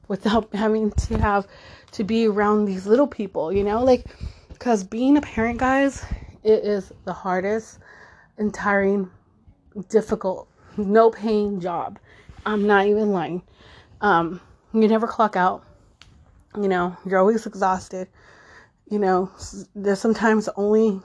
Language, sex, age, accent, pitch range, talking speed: English, female, 20-39, American, 190-230 Hz, 135 wpm